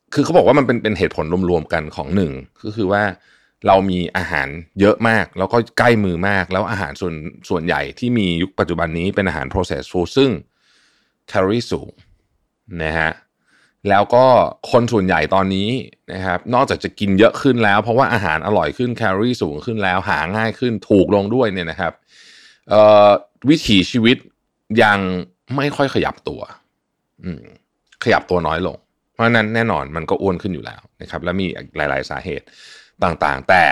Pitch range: 90-115 Hz